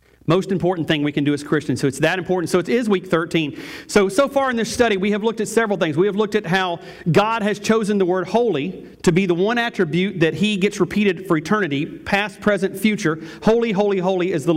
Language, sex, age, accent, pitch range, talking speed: English, male, 40-59, American, 165-210 Hz, 245 wpm